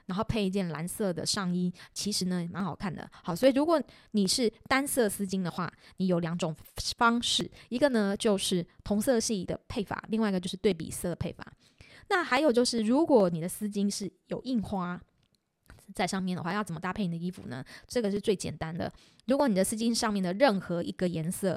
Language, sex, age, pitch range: Chinese, female, 20-39, 175-225 Hz